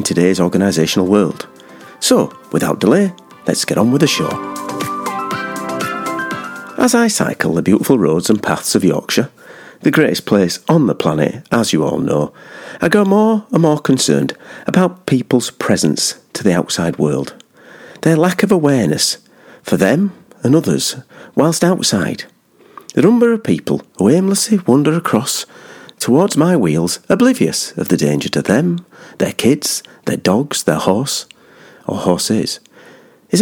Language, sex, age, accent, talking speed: English, male, 40-59, British, 145 wpm